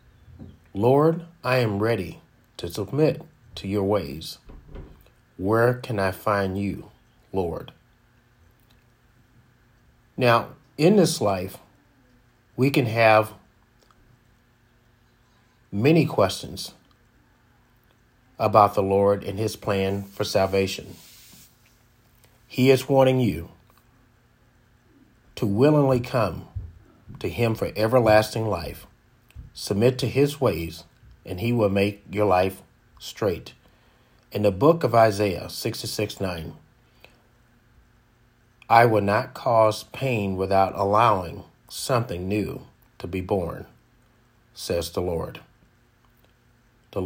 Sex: male